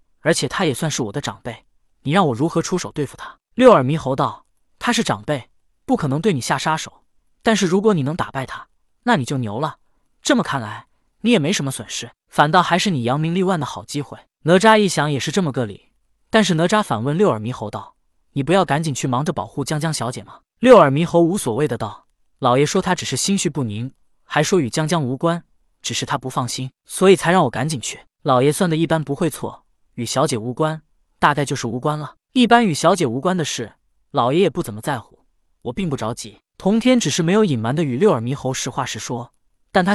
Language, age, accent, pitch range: Chinese, 20-39, native, 130-180 Hz